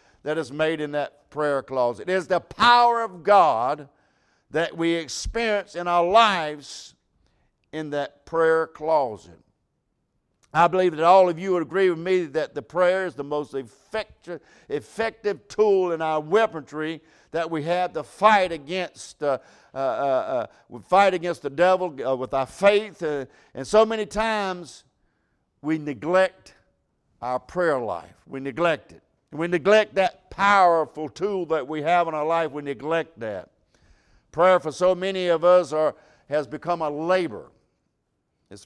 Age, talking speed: 60-79, 145 wpm